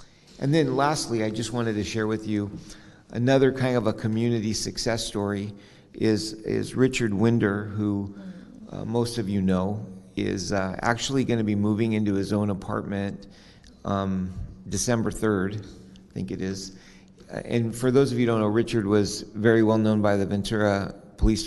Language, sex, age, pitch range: English, male, 50-69, 100-115 Hz